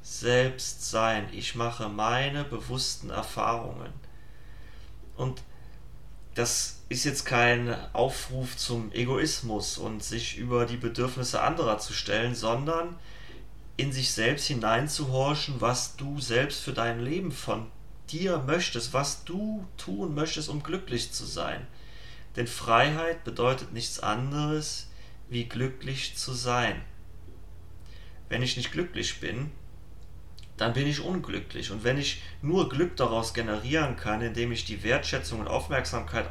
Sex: male